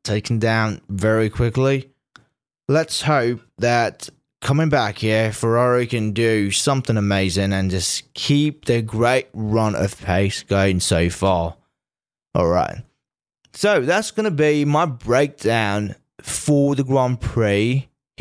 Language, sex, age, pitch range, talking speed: English, male, 20-39, 110-140 Hz, 125 wpm